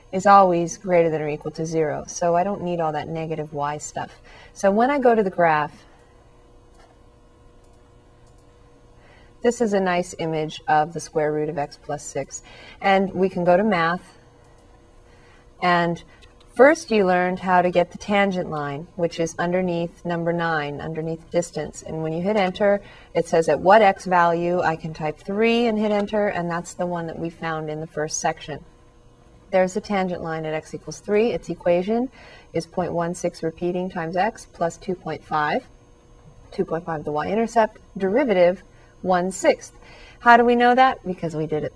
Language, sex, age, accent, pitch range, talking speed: English, female, 30-49, American, 155-190 Hz, 175 wpm